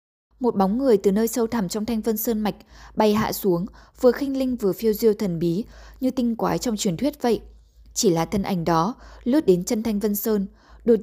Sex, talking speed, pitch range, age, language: female, 230 wpm, 180-235 Hz, 10-29, Vietnamese